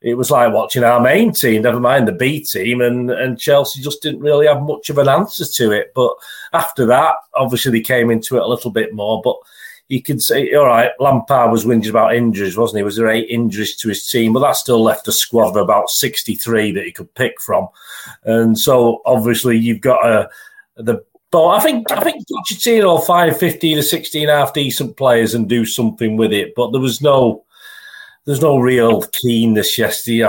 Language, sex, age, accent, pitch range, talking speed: English, male, 40-59, British, 110-150 Hz, 210 wpm